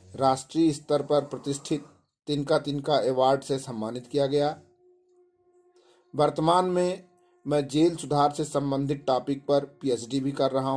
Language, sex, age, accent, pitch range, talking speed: Hindi, male, 50-69, native, 140-175 Hz, 145 wpm